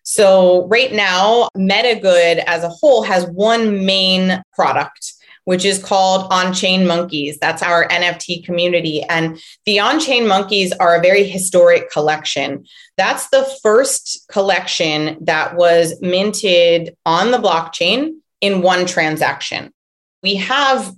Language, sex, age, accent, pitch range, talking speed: English, female, 30-49, American, 170-200 Hz, 125 wpm